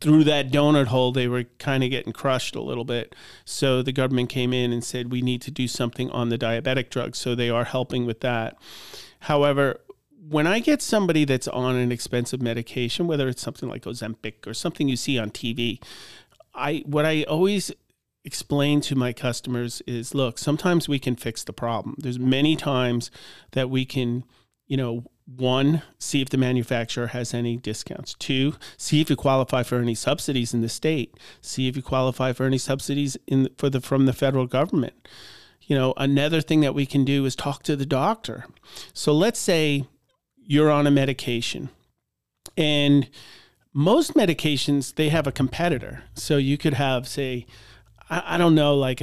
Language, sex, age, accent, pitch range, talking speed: English, male, 40-59, American, 125-145 Hz, 185 wpm